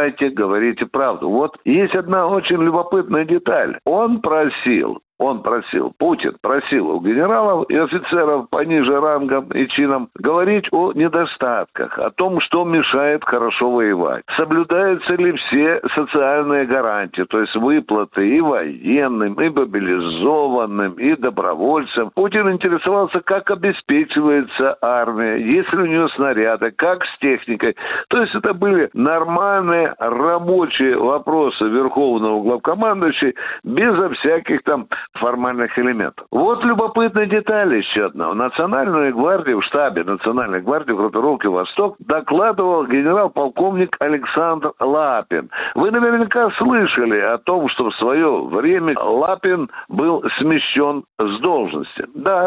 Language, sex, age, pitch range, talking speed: Russian, male, 60-79, 130-190 Hz, 120 wpm